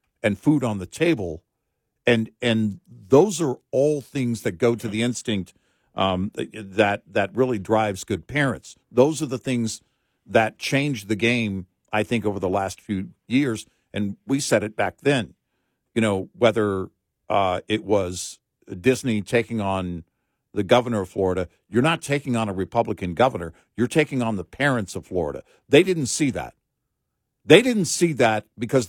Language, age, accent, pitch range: English, 50-69, American, 105-135 Hz